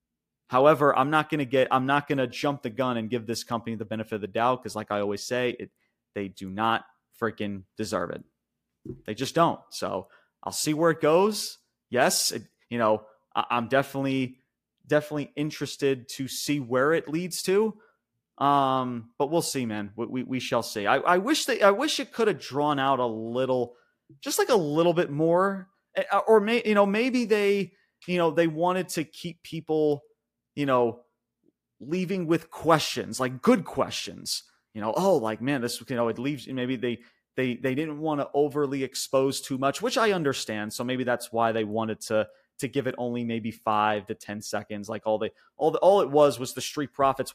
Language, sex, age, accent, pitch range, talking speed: English, male, 30-49, American, 115-155 Hz, 200 wpm